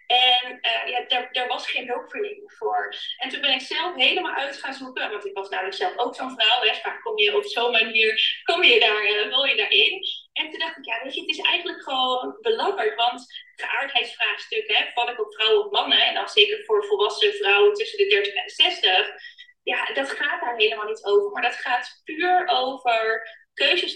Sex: female